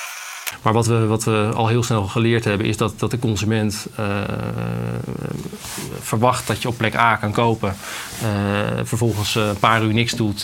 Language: Dutch